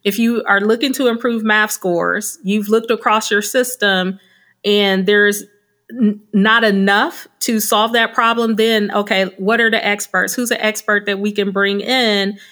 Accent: American